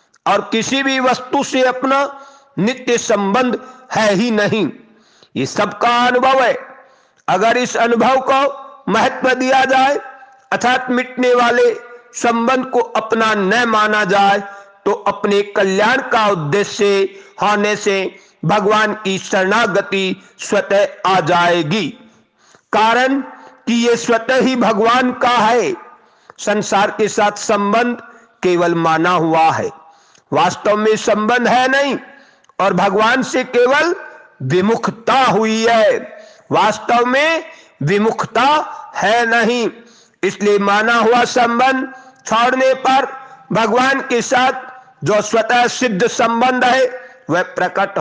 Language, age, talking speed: Hindi, 50-69, 115 wpm